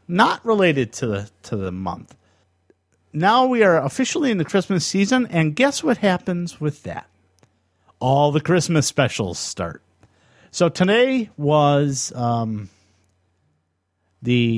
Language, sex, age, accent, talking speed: English, male, 50-69, American, 130 wpm